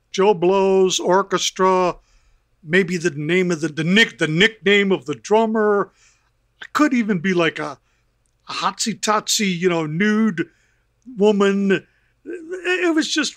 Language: English